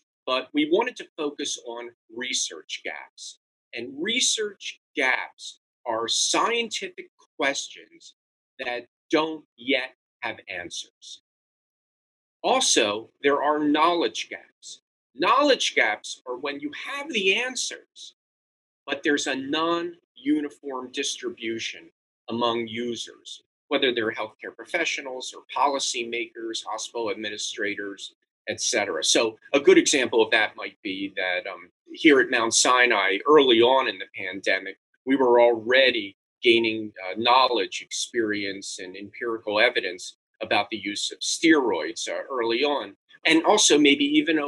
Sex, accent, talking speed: male, American, 120 wpm